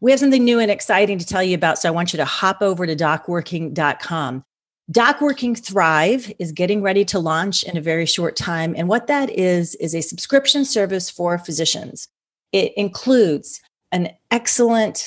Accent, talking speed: American, 180 wpm